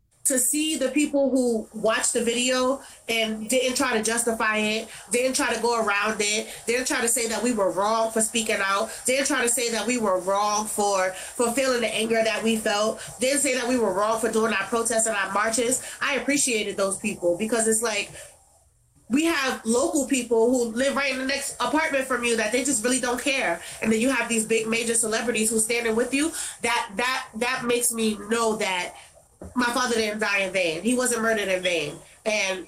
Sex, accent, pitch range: female, American, 215-250 Hz